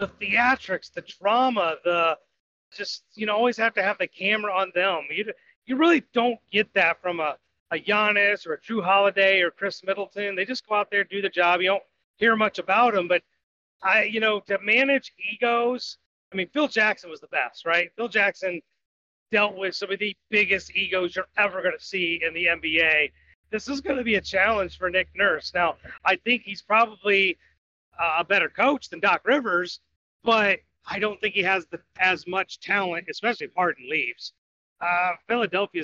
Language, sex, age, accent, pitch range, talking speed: English, male, 30-49, American, 175-210 Hz, 195 wpm